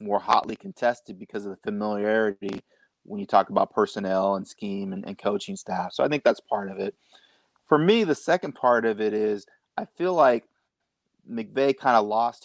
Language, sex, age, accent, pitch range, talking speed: English, male, 30-49, American, 110-135 Hz, 195 wpm